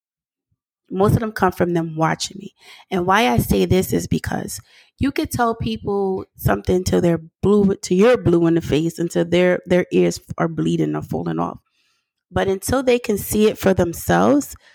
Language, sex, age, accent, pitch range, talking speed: English, female, 30-49, American, 165-195 Hz, 185 wpm